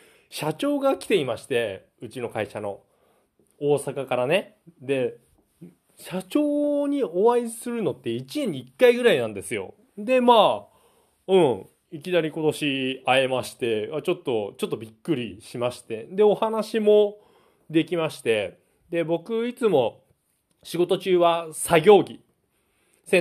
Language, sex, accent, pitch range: Japanese, male, native, 145-235 Hz